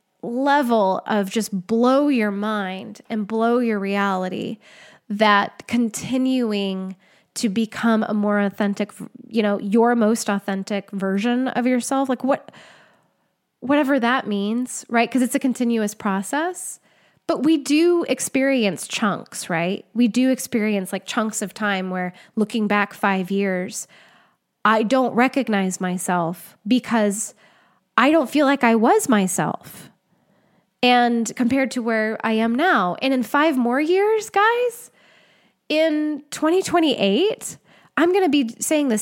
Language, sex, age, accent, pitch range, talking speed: English, female, 10-29, American, 205-250 Hz, 135 wpm